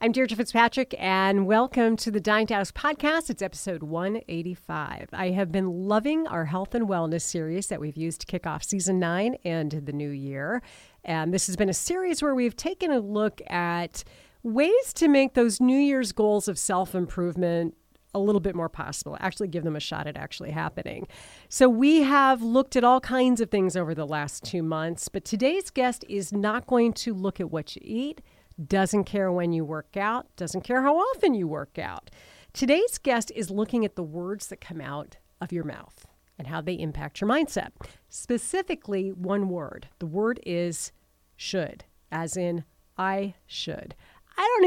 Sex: female